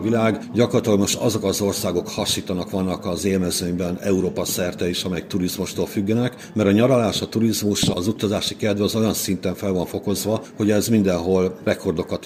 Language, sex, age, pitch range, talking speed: Hungarian, male, 50-69, 90-110 Hz, 170 wpm